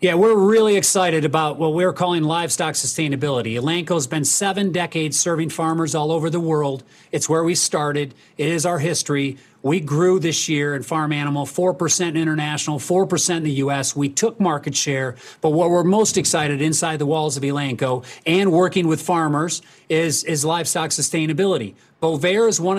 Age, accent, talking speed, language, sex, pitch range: 40-59, American, 175 wpm, English, male, 145-180 Hz